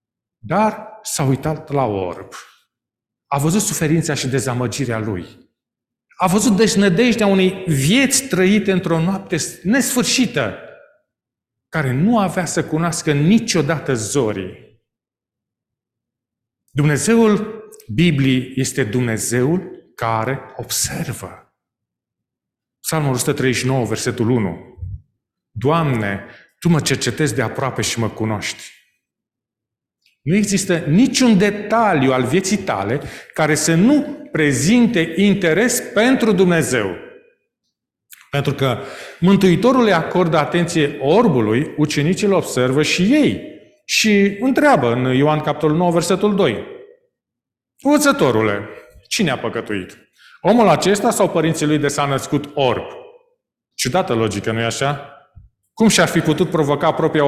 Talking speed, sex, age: 110 wpm, male, 40-59